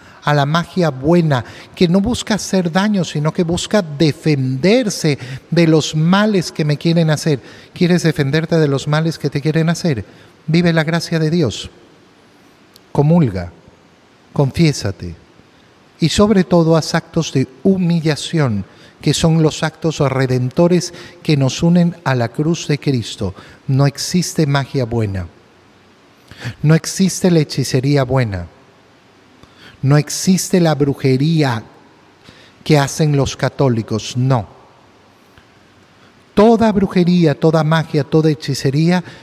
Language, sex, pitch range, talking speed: Spanish, male, 135-175 Hz, 120 wpm